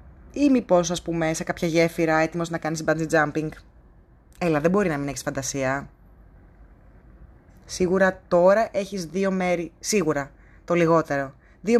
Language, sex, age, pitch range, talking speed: Greek, female, 20-39, 145-185 Hz, 140 wpm